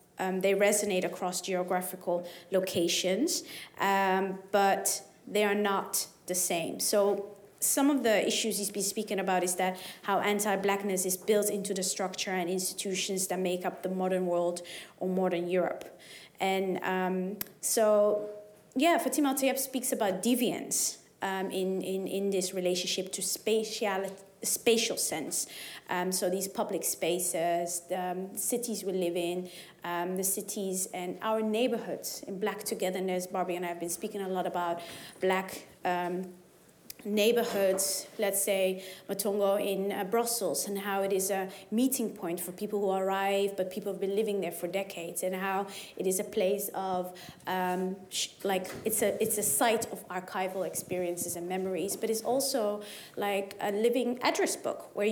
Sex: female